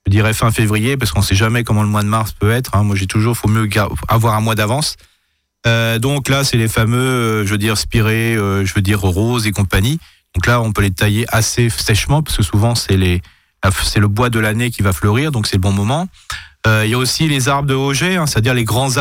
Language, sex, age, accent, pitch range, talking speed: French, male, 30-49, French, 105-120 Hz, 255 wpm